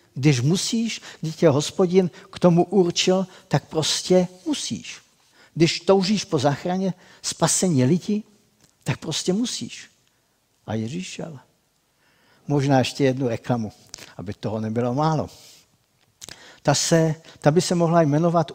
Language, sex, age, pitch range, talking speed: Czech, male, 50-69, 125-175 Hz, 125 wpm